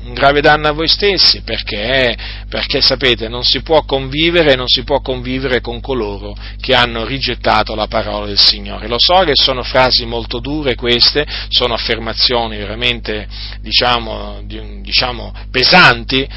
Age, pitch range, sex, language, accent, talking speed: 40-59, 105-130 Hz, male, Italian, native, 150 wpm